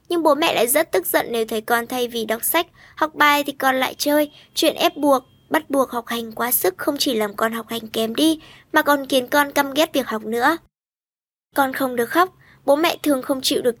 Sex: male